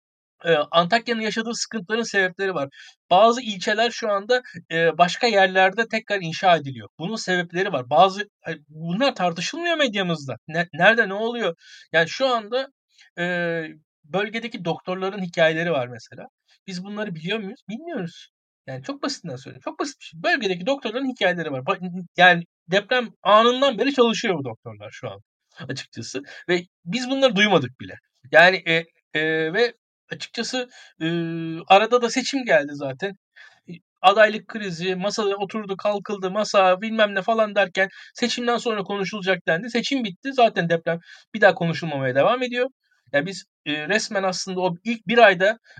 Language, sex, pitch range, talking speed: Turkish, male, 170-225 Hz, 140 wpm